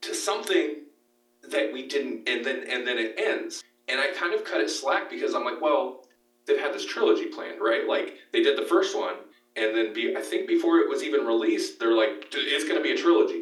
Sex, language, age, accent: male, English, 40-59, American